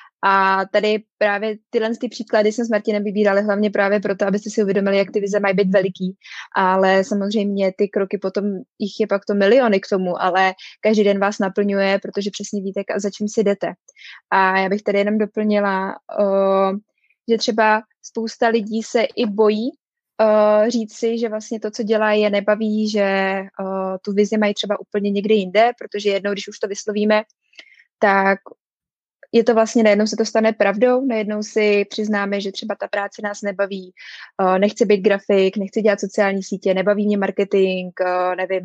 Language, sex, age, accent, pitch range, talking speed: Czech, female, 20-39, native, 200-215 Hz, 170 wpm